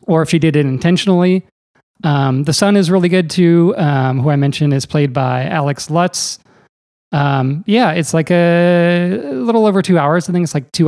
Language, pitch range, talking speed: English, 140-175 Hz, 200 wpm